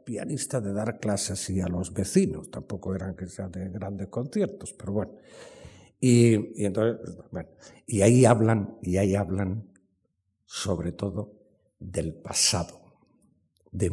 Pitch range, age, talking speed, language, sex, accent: 95-130 Hz, 60-79, 140 wpm, Spanish, male, Spanish